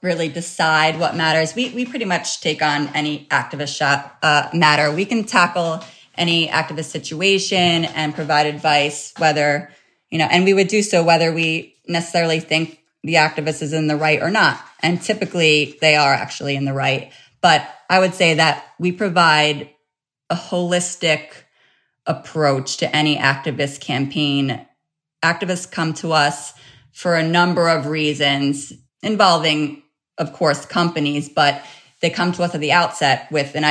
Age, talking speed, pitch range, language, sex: 20-39, 160 wpm, 150-180 Hz, English, female